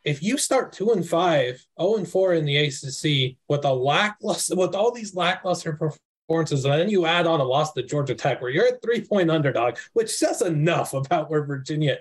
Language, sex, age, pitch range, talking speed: English, male, 20-39, 140-185 Hz, 210 wpm